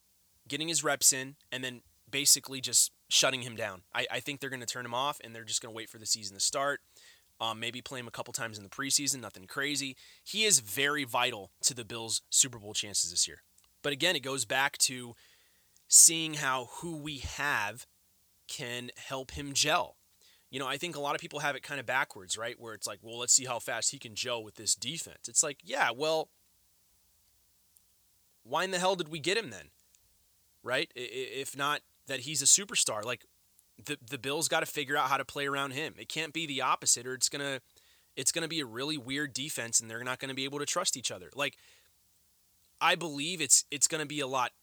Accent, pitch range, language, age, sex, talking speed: American, 110-145 Hz, English, 30-49, male, 225 wpm